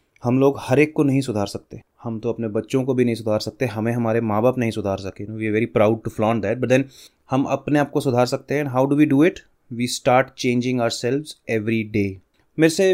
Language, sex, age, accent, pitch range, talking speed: English, male, 30-49, Indian, 110-140 Hz, 95 wpm